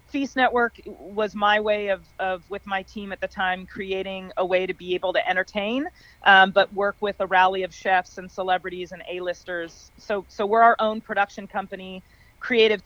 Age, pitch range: 40-59, 180-205 Hz